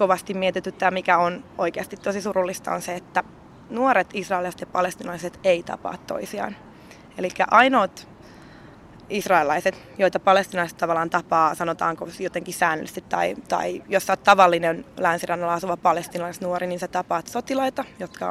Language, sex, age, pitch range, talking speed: Finnish, female, 20-39, 175-205 Hz, 130 wpm